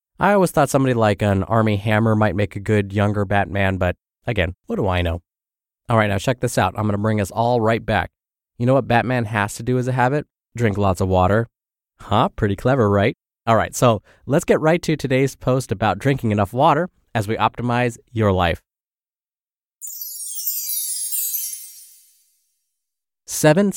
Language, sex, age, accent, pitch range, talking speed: English, male, 20-39, American, 100-140 Hz, 175 wpm